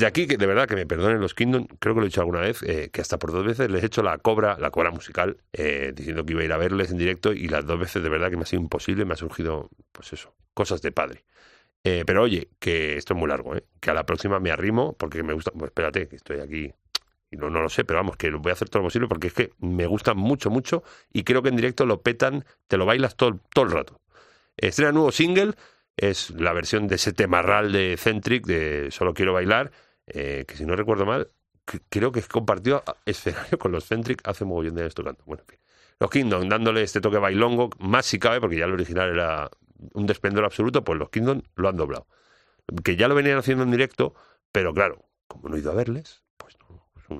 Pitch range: 85-120 Hz